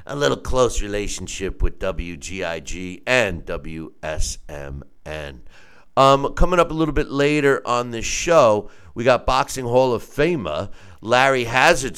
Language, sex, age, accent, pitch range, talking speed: English, male, 50-69, American, 95-140 Hz, 125 wpm